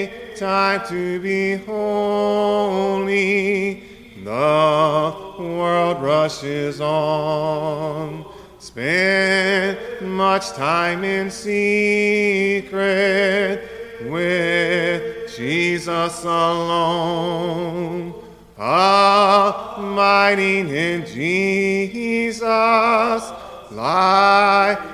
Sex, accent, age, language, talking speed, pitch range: male, American, 30-49, English, 50 wpm, 170-200 Hz